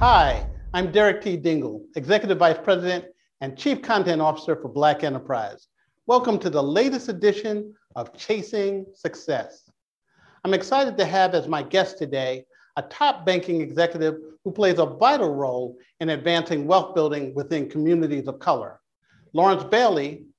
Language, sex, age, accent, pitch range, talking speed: English, male, 50-69, American, 155-205 Hz, 145 wpm